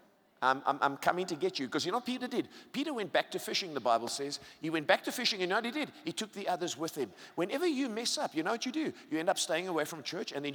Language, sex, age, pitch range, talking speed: English, male, 50-69, 175-250 Hz, 315 wpm